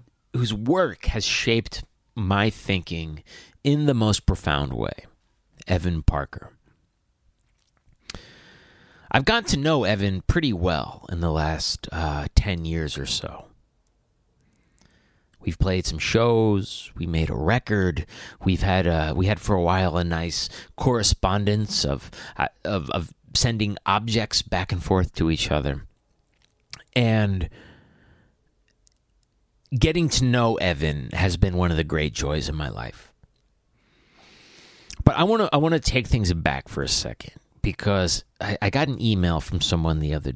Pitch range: 80-105 Hz